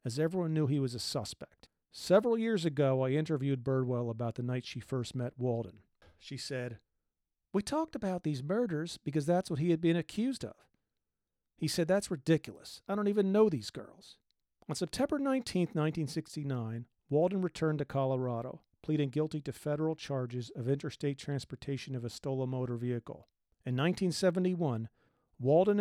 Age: 40-59